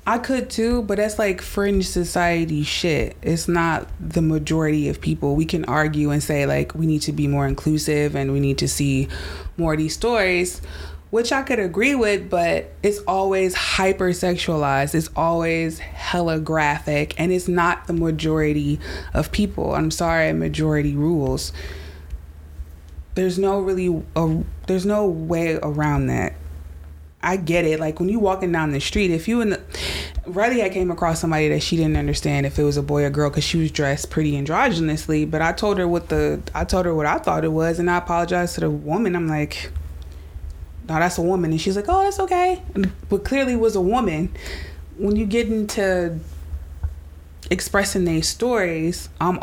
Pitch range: 140-180 Hz